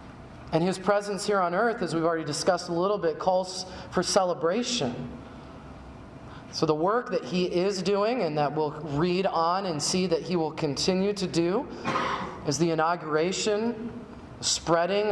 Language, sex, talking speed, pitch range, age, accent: English, male, 160 wpm, 150-190 Hz, 30-49, American